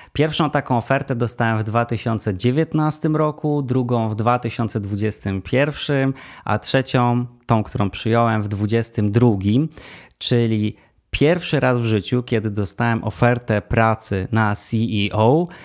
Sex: male